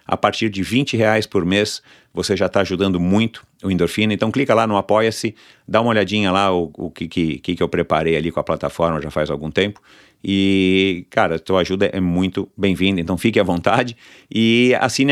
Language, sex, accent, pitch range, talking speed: Portuguese, male, Brazilian, 90-125 Hz, 205 wpm